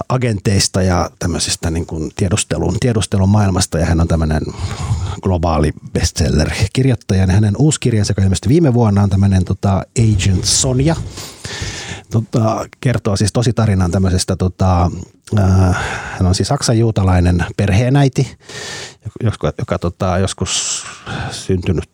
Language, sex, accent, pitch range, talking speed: Finnish, male, native, 90-110 Hz, 120 wpm